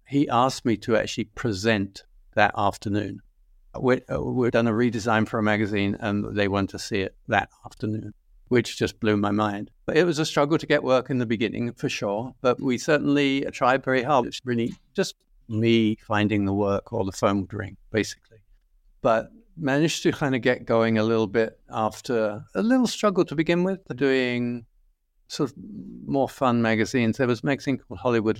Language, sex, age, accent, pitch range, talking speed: English, male, 50-69, British, 110-135 Hz, 190 wpm